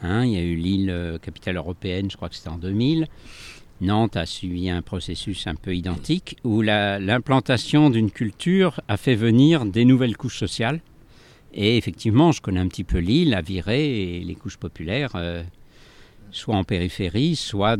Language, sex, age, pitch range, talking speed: French, male, 60-79, 95-125 Hz, 180 wpm